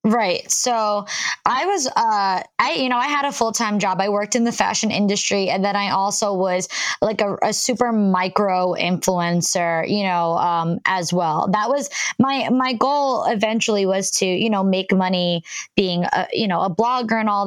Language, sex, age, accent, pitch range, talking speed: English, female, 20-39, American, 185-230 Hz, 185 wpm